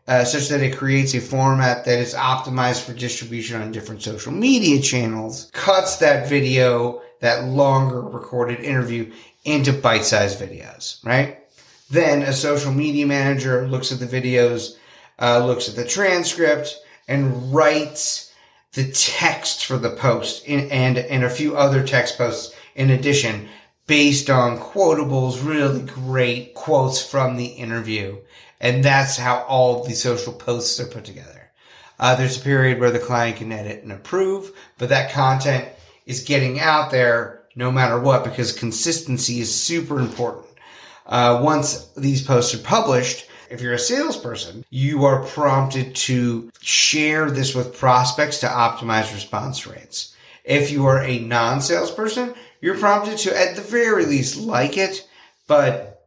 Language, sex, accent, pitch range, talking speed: English, male, American, 120-140 Hz, 150 wpm